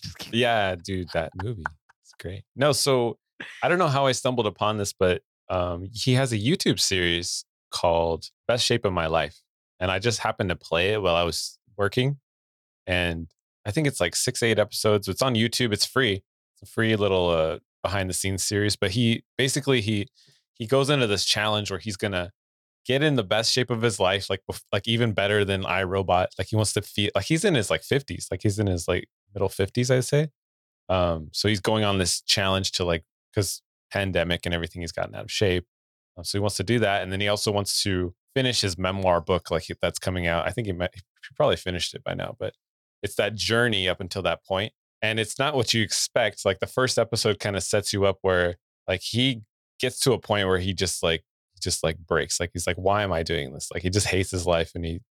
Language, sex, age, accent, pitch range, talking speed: English, male, 20-39, American, 90-115 Hz, 225 wpm